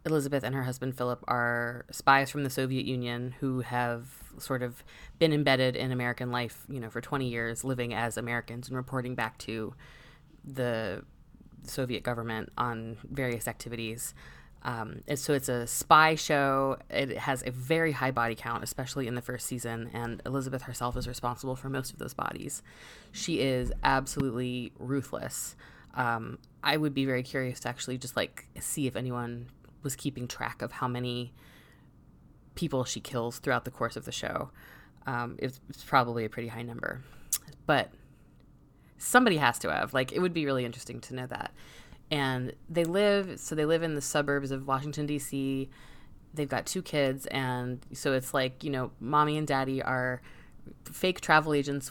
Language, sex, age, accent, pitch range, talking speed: English, female, 20-39, American, 120-140 Hz, 175 wpm